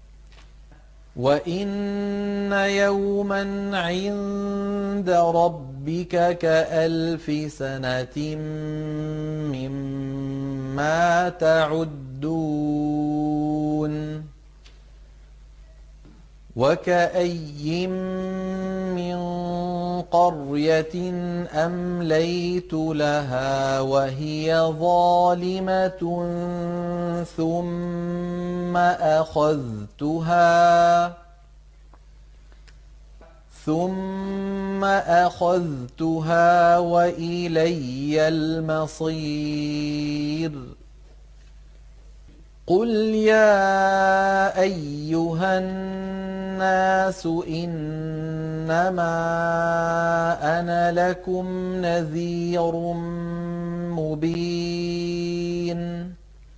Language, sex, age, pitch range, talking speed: Arabic, male, 40-59, 155-175 Hz, 30 wpm